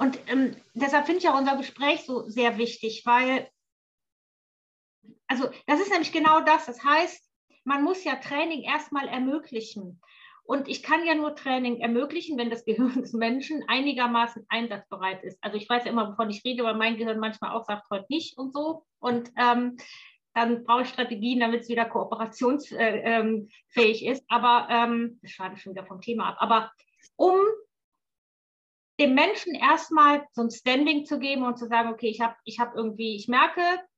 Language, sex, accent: German, female, German